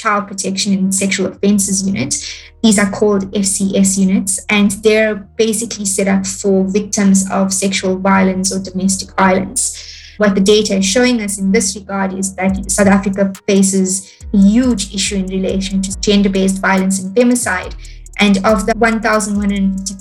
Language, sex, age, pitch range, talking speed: English, female, 20-39, 195-215 Hz, 155 wpm